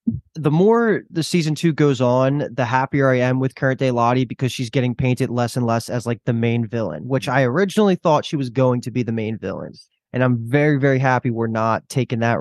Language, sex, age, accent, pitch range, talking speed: English, male, 20-39, American, 120-140 Hz, 230 wpm